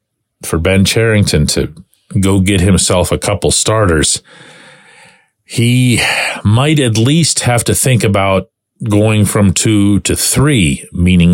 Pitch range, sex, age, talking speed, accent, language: 95-140 Hz, male, 40-59, 125 wpm, American, English